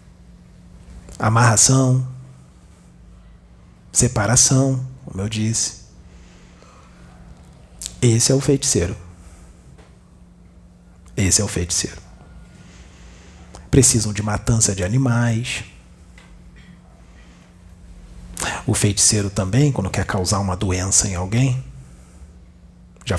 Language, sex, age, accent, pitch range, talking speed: Portuguese, male, 40-59, Brazilian, 85-125 Hz, 75 wpm